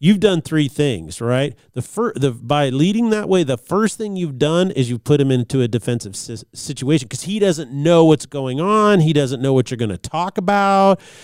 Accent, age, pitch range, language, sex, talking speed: American, 40-59, 125-160 Hz, English, male, 225 wpm